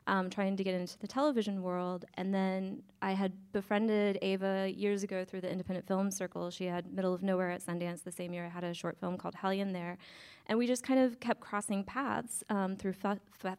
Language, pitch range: English, 185-225 Hz